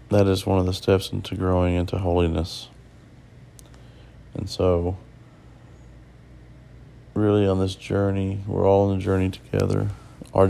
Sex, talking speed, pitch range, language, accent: male, 130 wpm, 95-120 Hz, English, American